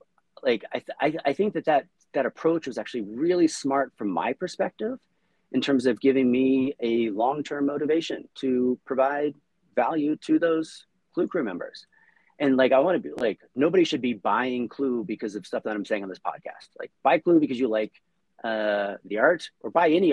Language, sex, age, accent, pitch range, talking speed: English, male, 30-49, American, 110-145 Hz, 200 wpm